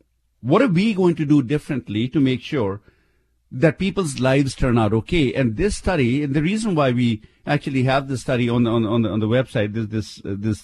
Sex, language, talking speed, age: male, English, 220 wpm, 50-69